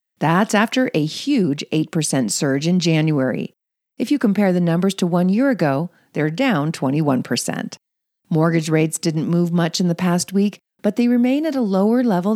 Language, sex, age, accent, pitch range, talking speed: English, female, 40-59, American, 155-230 Hz, 175 wpm